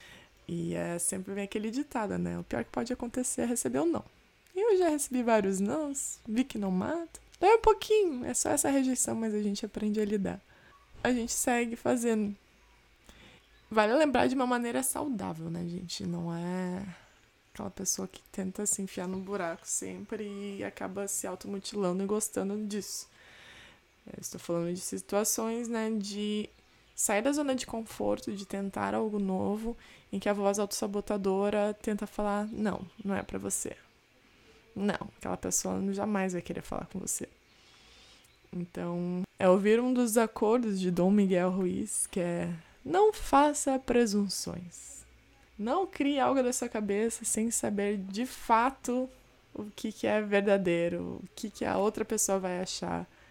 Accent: Brazilian